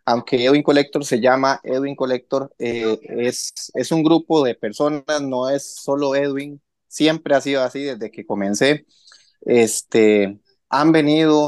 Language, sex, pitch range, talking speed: Spanish, male, 115-155 Hz, 145 wpm